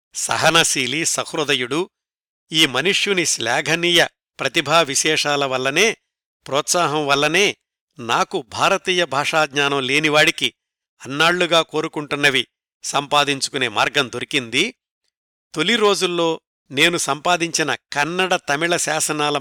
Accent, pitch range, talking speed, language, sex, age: native, 140-170 Hz, 75 wpm, Telugu, male, 60-79